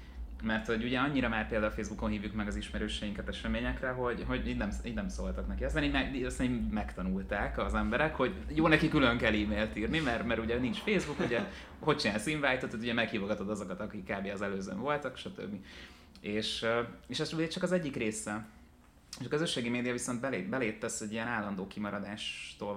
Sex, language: male, Hungarian